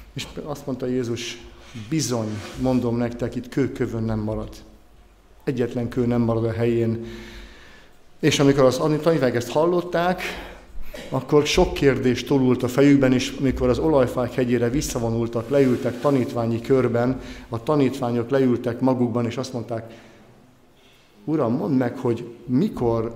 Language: Hungarian